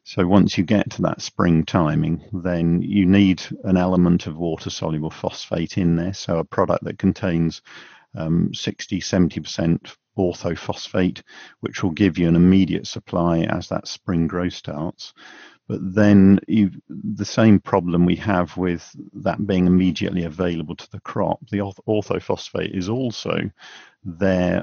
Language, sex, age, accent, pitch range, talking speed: English, male, 50-69, British, 85-100 Hz, 145 wpm